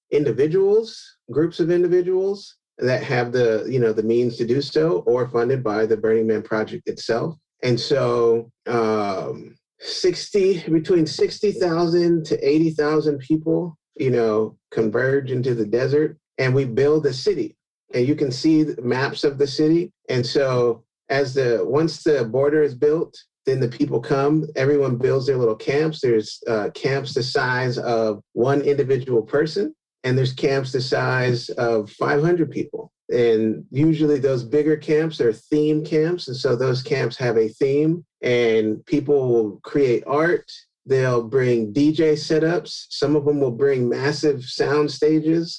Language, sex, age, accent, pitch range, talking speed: English, male, 30-49, American, 120-155 Hz, 155 wpm